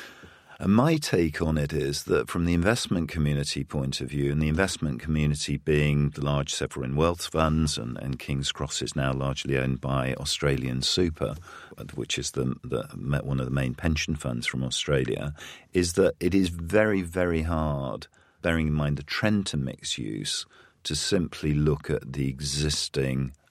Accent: British